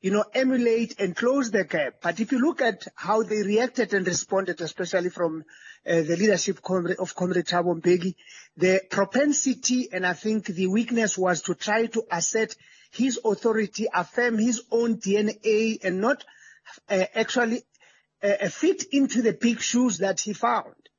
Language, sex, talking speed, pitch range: English, male, 165 wpm, 185-225 Hz